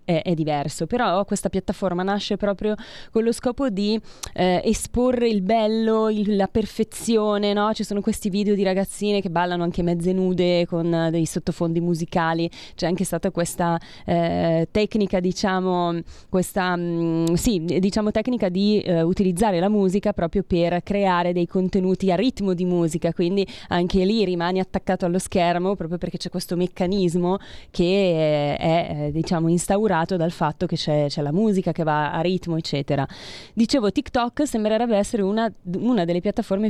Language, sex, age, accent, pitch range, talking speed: Italian, female, 20-39, native, 175-205 Hz, 160 wpm